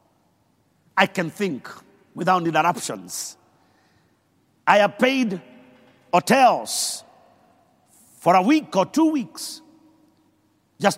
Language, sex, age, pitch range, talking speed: English, male, 50-69, 165-260 Hz, 85 wpm